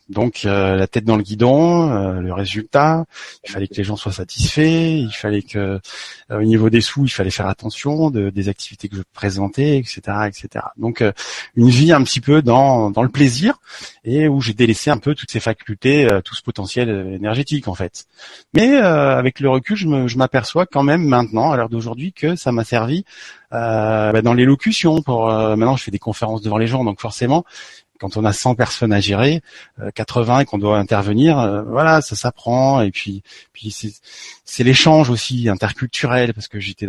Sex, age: male, 30-49